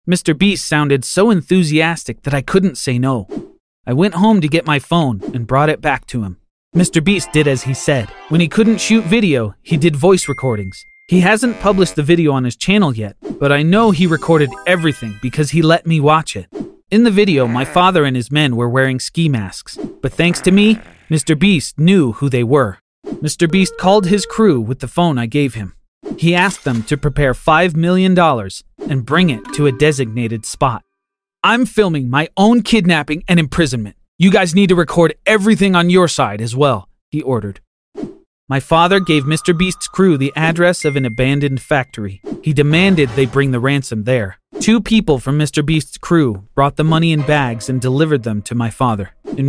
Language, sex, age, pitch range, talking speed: English, male, 30-49, 130-180 Hz, 200 wpm